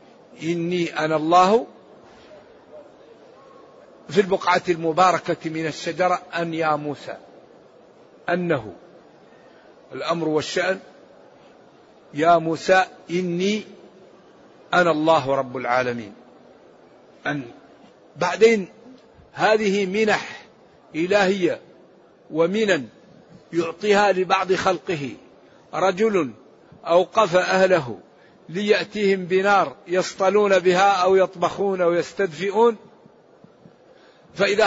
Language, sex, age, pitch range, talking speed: Arabic, male, 60-79, 170-200 Hz, 75 wpm